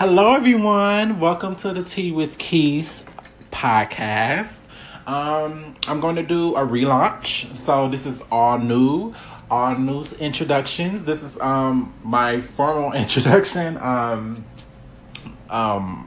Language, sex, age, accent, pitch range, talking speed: English, male, 30-49, American, 110-145 Hz, 115 wpm